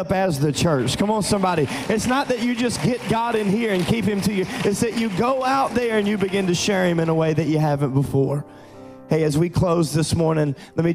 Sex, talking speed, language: male, 260 wpm, English